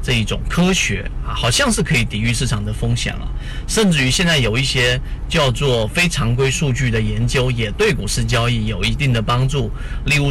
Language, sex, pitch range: Chinese, male, 115-145 Hz